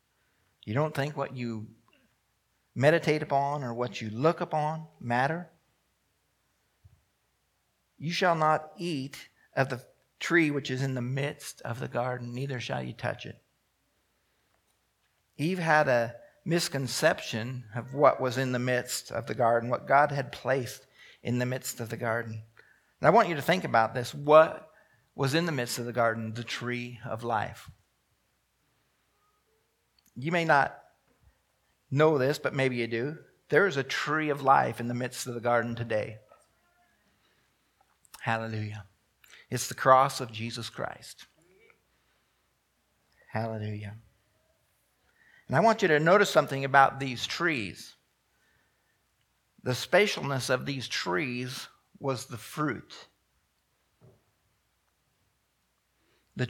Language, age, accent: English, 50-69, American